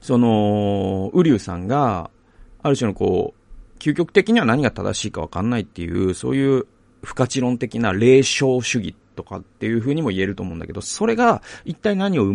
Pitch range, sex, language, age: 100-165 Hz, male, Japanese, 40-59